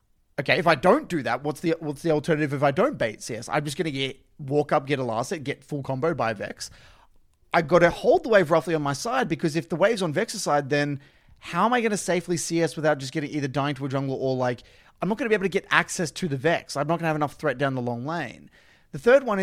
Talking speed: 280 wpm